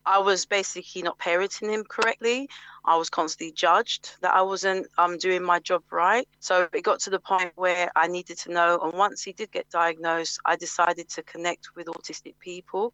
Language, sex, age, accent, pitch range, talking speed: English, female, 30-49, British, 170-190 Hz, 200 wpm